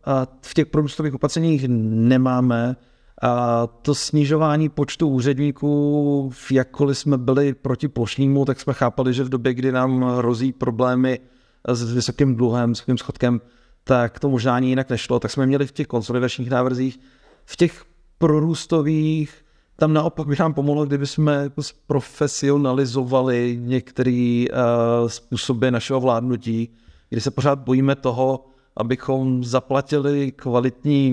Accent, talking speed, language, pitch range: native, 130 wpm, Czech, 120-140 Hz